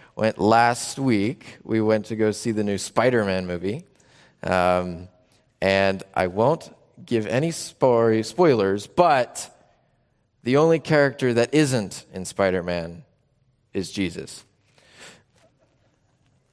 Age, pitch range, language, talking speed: 30-49, 105-135 Hz, English, 105 wpm